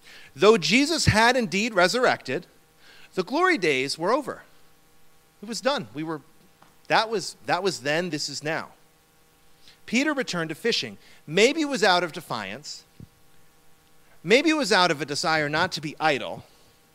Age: 40-59